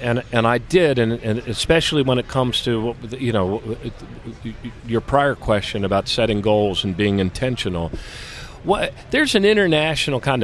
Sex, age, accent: male, 40-59, American